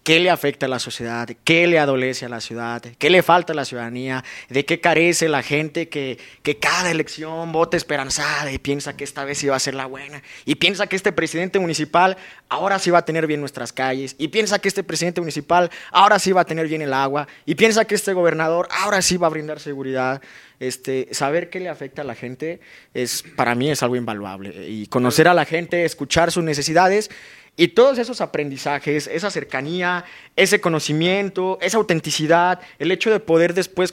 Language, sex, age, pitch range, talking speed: Spanish, male, 20-39, 140-175 Hz, 205 wpm